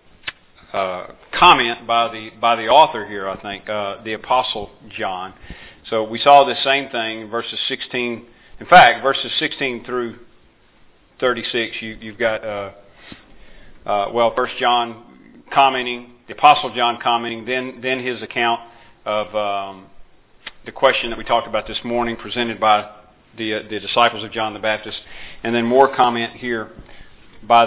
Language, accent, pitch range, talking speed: English, American, 110-125 Hz, 160 wpm